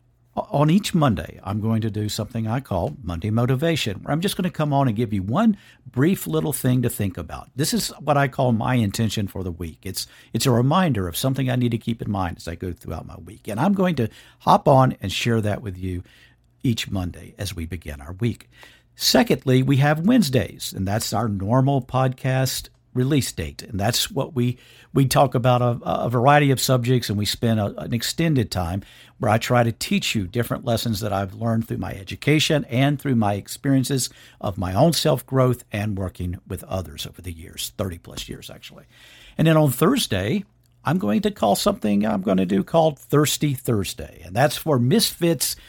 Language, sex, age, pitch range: English, male, 50-69, 105-135 Hz